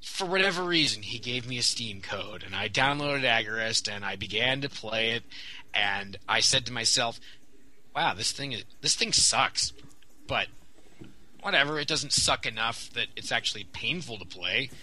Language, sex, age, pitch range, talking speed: English, male, 20-39, 115-160 Hz, 170 wpm